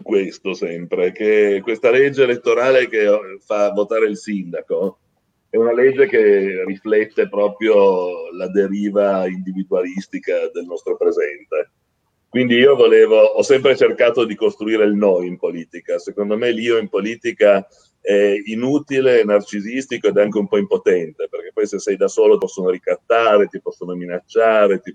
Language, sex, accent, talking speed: Italian, male, native, 145 wpm